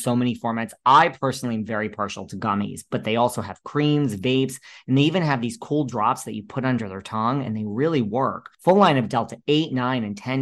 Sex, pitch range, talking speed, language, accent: male, 110-140 Hz, 235 wpm, English, American